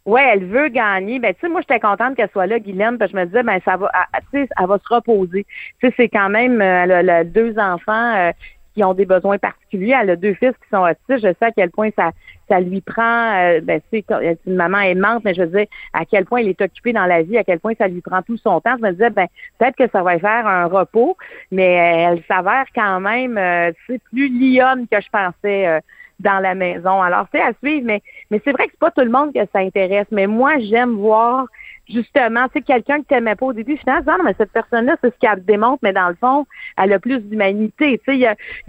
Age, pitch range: 40-59, 195-250 Hz